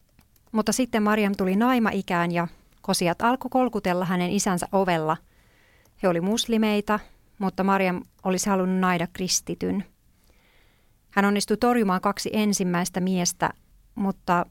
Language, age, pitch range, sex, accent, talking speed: Finnish, 30-49, 175-200 Hz, female, native, 115 wpm